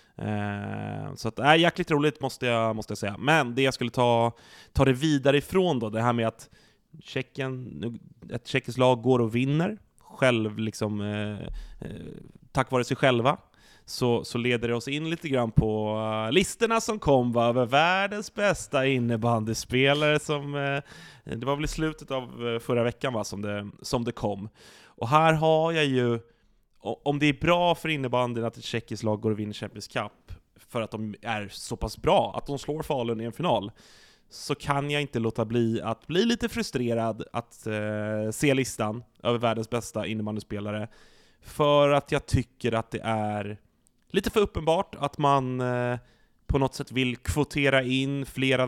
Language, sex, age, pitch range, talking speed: Swedish, male, 20-39, 115-140 Hz, 180 wpm